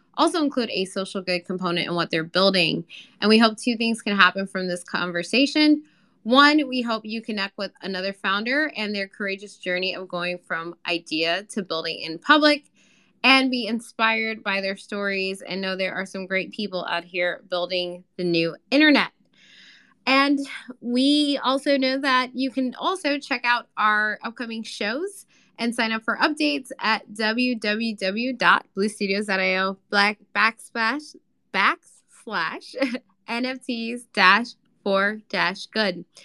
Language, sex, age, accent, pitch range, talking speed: English, female, 10-29, American, 190-250 Hz, 135 wpm